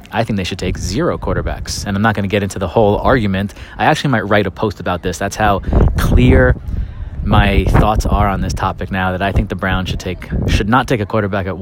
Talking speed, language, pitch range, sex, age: 250 wpm, English, 95-110 Hz, male, 20-39